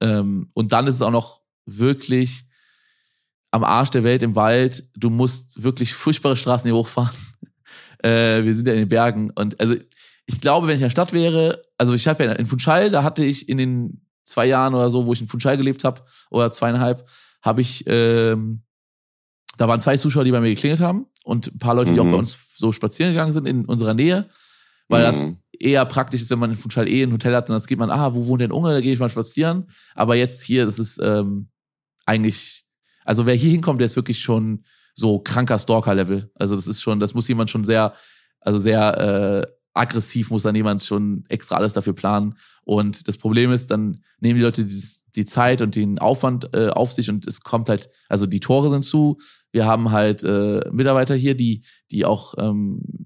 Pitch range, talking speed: 110-130 Hz, 210 wpm